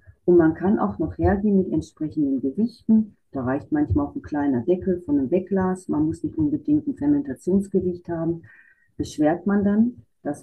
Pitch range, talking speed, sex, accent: 145-195 Hz, 175 wpm, female, German